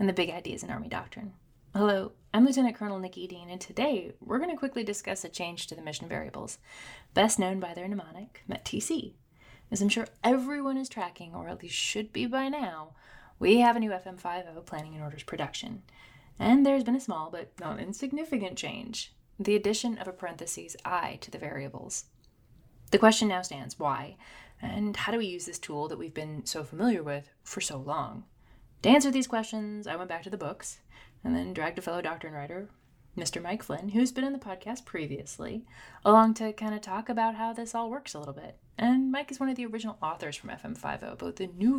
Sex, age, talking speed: female, 20-39, 210 wpm